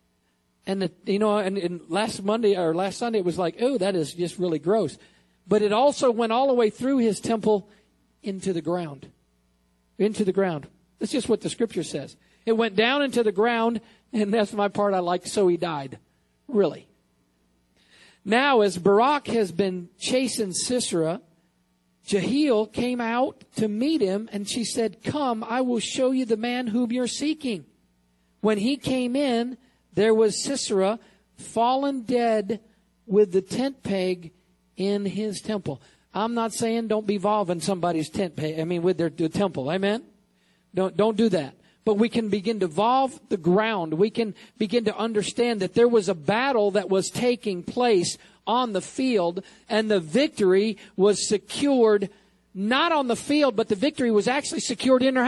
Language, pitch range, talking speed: English, 180-235 Hz, 175 wpm